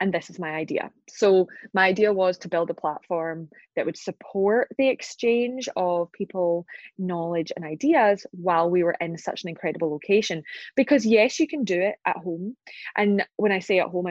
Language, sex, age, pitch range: English, female, 20-39, 175-215 Hz